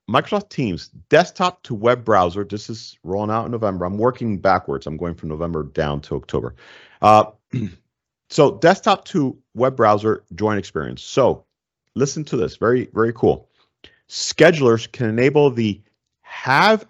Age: 40-59